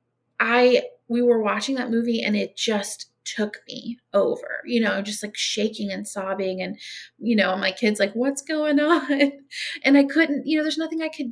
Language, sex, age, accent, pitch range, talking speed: English, female, 20-39, American, 205-265 Hz, 195 wpm